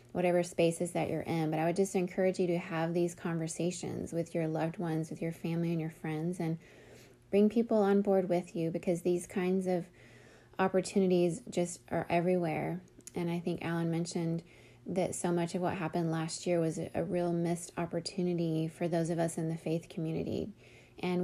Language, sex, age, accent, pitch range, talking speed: English, female, 20-39, American, 165-185 Hz, 190 wpm